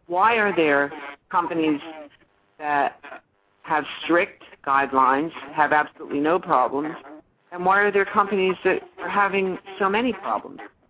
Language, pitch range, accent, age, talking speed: English, 135-175 Hz, American, 50-69, 125 wpm